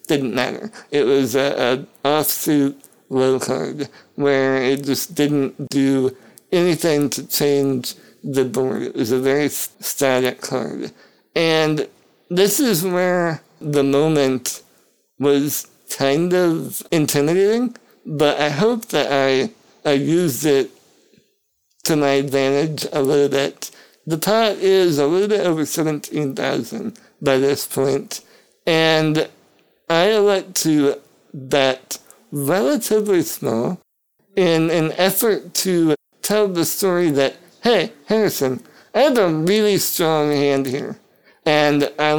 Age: 60-79